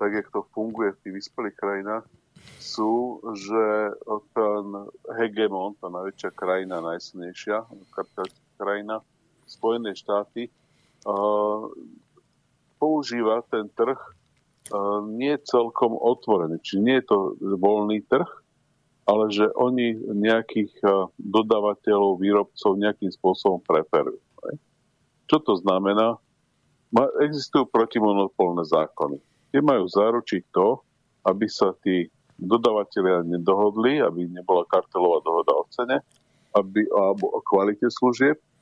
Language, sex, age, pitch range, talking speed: Slovak, male, 50-69, 100-120 Hz, 100 wpm